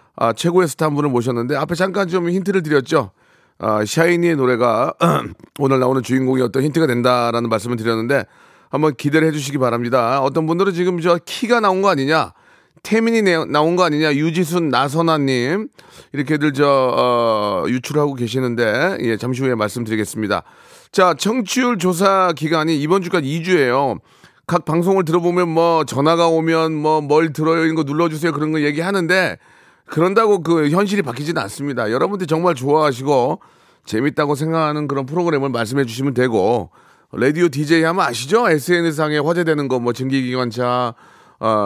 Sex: male